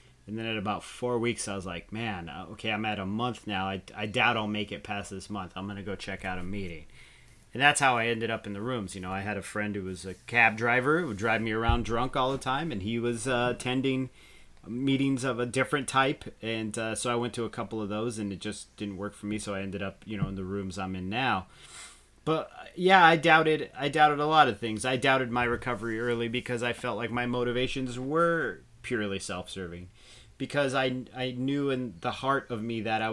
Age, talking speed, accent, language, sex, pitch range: 30-49, 245 wpm, American, English, male, 100-125 Hz